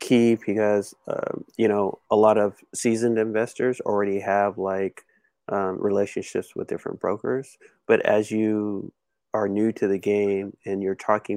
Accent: American